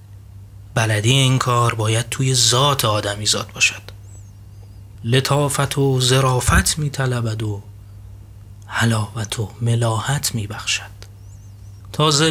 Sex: male